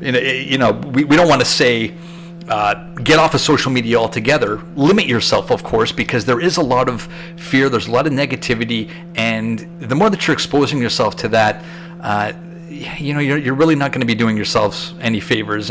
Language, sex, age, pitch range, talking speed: English, male, 40-59, 110-160 Hz, 200 wpm